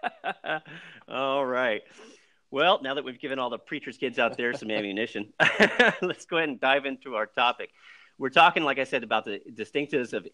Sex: male